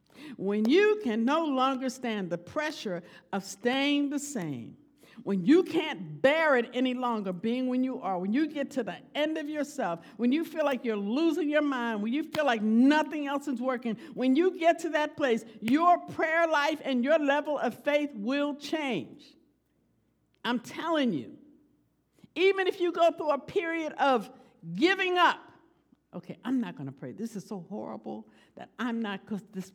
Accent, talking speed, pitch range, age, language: American, 185 wpm, 215-300 Hz, 60-79, English